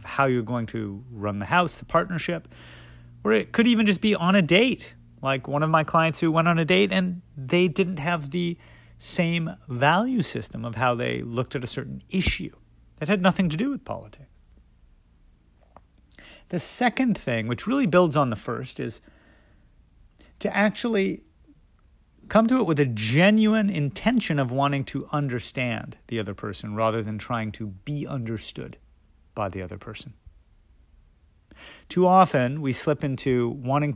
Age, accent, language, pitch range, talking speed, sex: 40-59, American, English, 105-170 Hz, 165 wpm, male